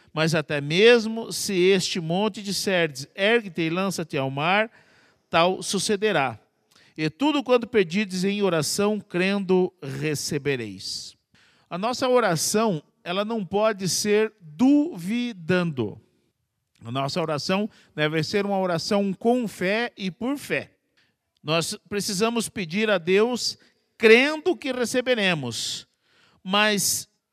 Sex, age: male, 50-69